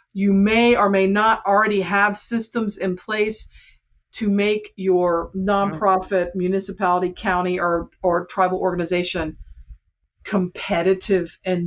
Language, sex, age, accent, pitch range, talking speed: English, female, 50-69, American, 180-215 Hz, 115 wpm